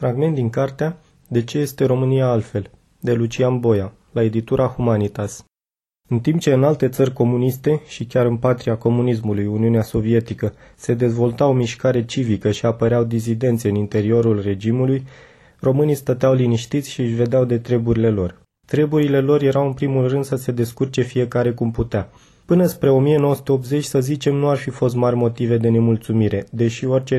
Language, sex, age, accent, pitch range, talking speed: Romanian, male, 20-39, native, 115-135 Hz, 165 wpm